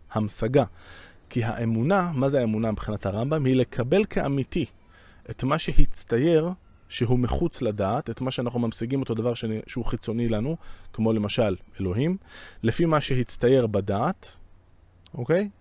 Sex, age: male, 20-39